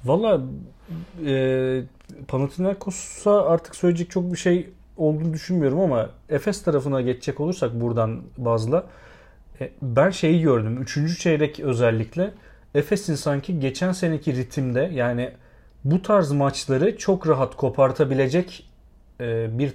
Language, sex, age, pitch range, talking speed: Turkish, male, 40-59, 125-165 Hz, 110 wpm